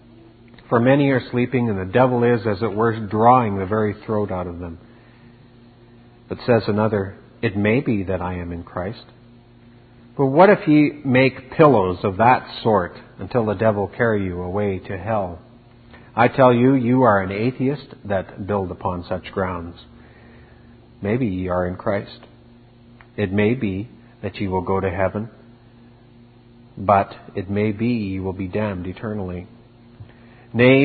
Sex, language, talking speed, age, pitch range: male, English, 160 wpm, 50-69, 100-120 Hz